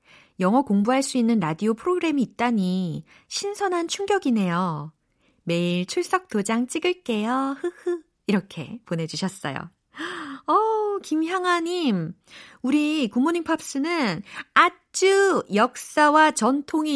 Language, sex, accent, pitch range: Korean, female, native, 175-275 Hz